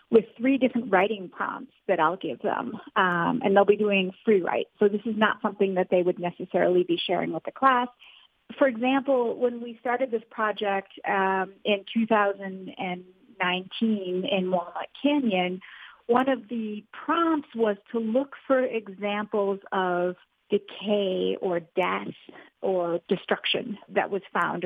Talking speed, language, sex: 150 wpm, English, female